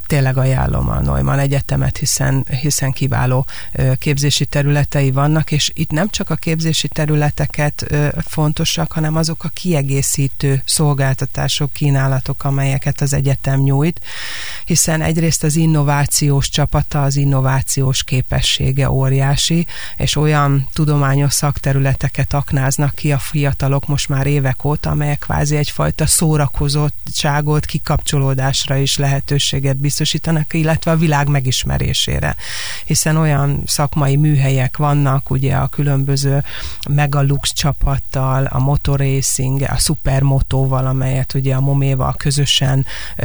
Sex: female